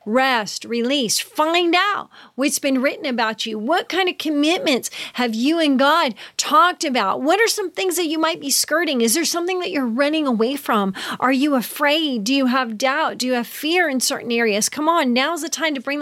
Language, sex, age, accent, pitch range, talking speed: English, female, 40-59, American, 230-310 Hz, 215 wpm